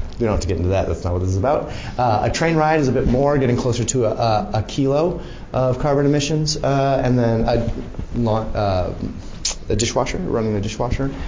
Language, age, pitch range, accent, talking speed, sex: English, 30-49, 95-130 Hz, American, 205 wpm, male